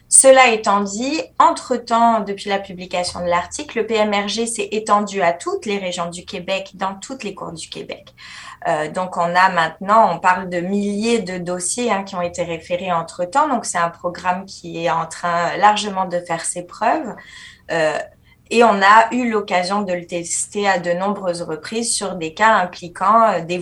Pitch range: 175-215 Hz